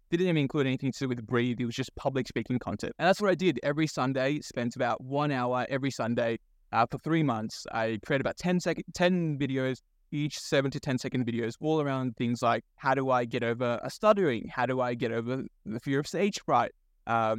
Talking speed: 230 wpm